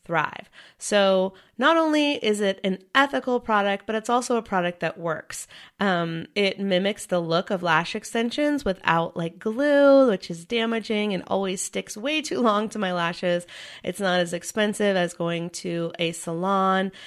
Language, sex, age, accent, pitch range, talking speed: English, female, 30-49, American, 175-230 Hz, 170 wpm